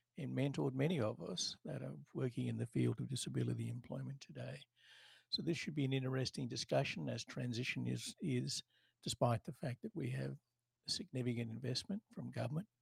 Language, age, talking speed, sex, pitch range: English, 60-79, 175 wpm, male, 120-155 Hz